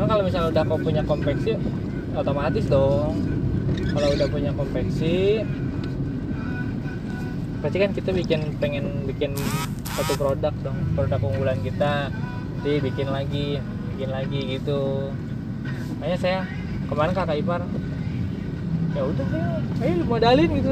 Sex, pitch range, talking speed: male, 115-155 Hz, 115 wpm